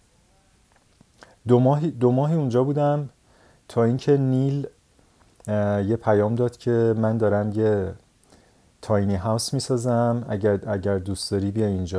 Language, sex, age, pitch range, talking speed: Persian, male, 30-49, 100-115 Hz, 125 wpm